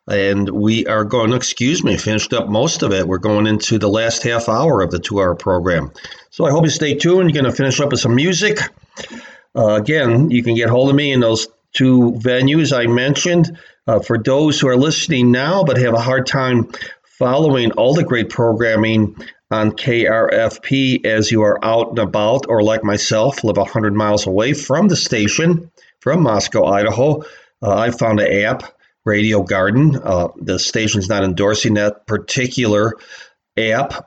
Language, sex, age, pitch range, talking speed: English, male, 40-59, 110-130 Hz, 180 wpm